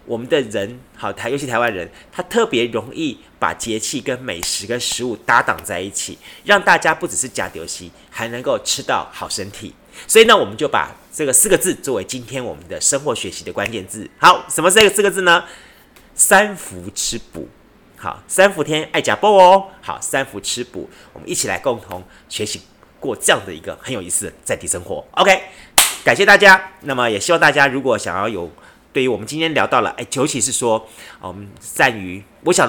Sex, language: male, Chinese